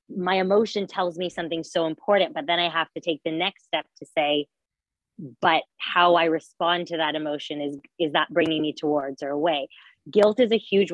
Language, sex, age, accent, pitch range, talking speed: English, female, 30-49, American, 160-185 Hz, 205 wpm